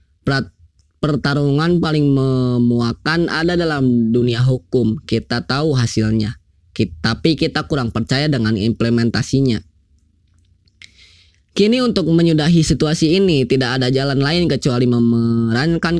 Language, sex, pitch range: Indonesian, female, 115-165 Hz